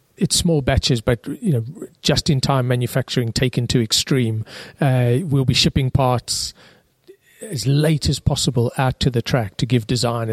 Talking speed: 175 wpm